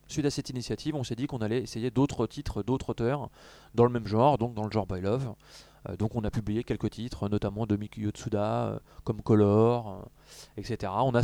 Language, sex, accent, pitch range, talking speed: French, male, French, 110-130 Hz, 220 wpm